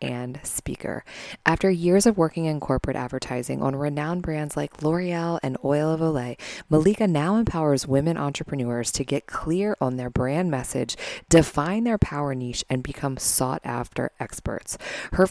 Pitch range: 130-165 Hz